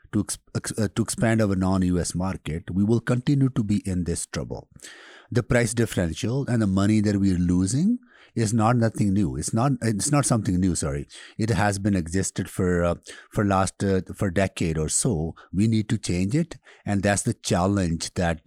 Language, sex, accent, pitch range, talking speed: English, male, Indian, 85-105 Hz, 185 wpm